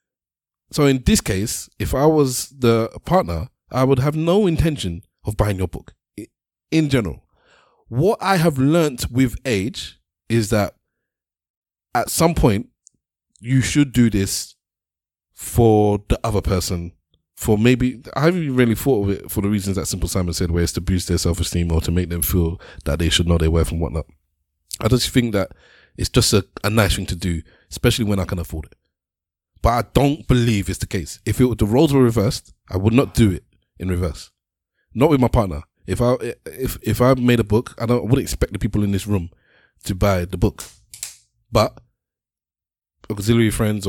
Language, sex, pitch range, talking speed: English, male, 90-120 Hz, 195 wpm